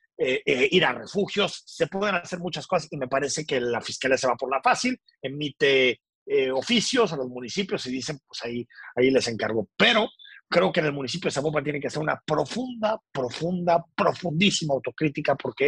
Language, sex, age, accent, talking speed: Spanish, male, 40-59, Mexican, 195 wpm